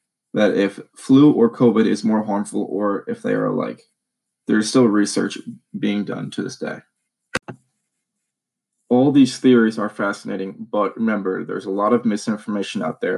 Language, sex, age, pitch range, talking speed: English, male, 20-39, 105-130 Hz, 165 wpm